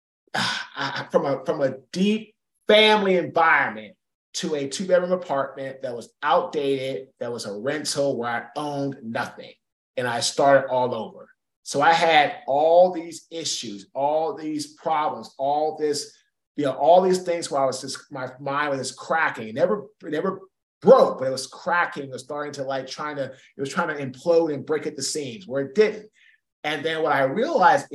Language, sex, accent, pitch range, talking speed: English, male, American, 135-170 Hz, 190 wpm